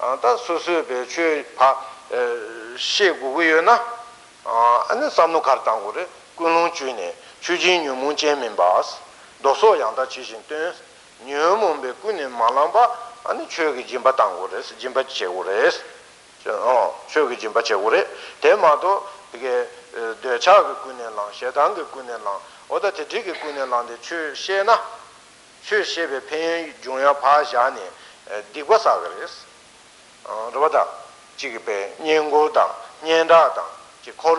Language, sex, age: Italian, male, 60-79